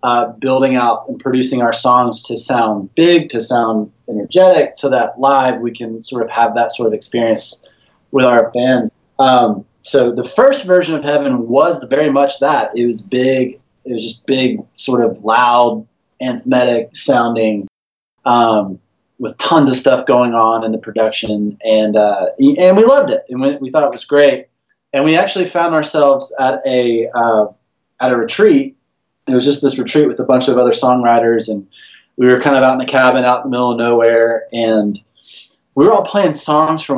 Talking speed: 190 wpm